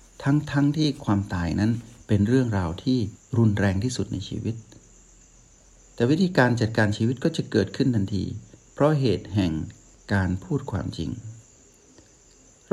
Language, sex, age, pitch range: Thai, male, 60-79, 100-130 Hz